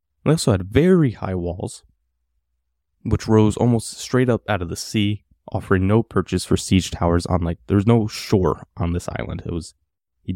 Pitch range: 80-105 Hz